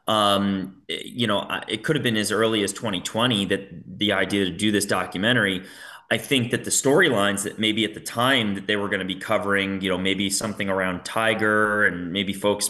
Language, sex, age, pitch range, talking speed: English, male, 30-49, 100-120 Hz, 205 wpm